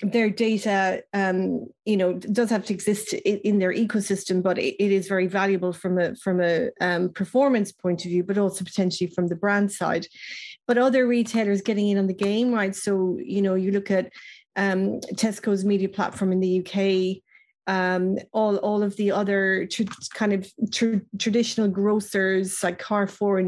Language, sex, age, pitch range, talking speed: English, female, 30-49, 190-215 Hz, 170 wpm